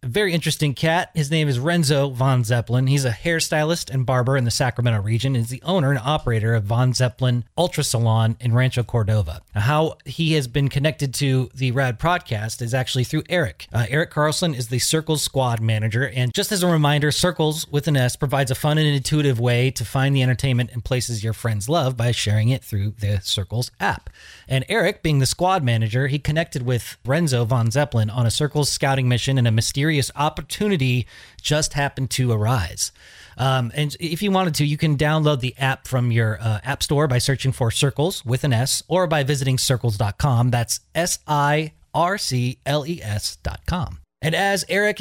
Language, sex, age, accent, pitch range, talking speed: English, male, 30-49, American, 120-155 Hz, 190 wpm